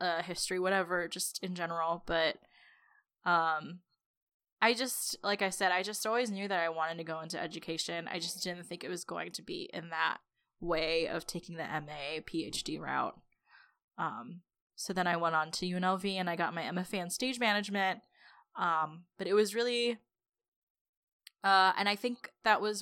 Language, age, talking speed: English, 10-29, 180 wpm